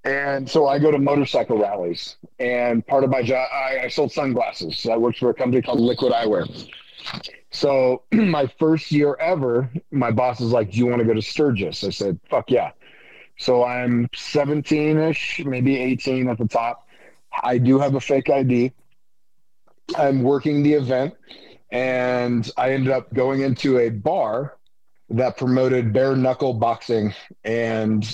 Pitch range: 115-135 Hz